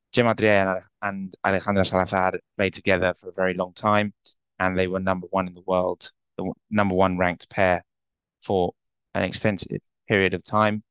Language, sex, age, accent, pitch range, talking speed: English, male, 20-39, British, 90-105 Hz, 165 wpm